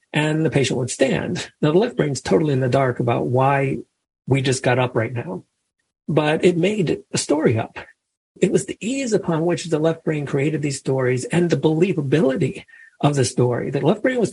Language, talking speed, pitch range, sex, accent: English, 205 wpm, 125-170 Hz, male, American